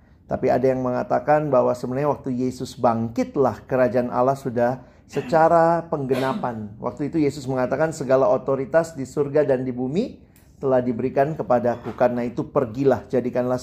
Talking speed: 140 wpm